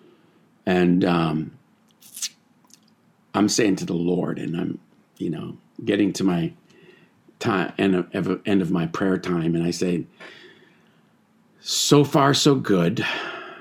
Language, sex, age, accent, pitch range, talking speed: English, male, 50-69, American, 90-140 Hz, 130 wpm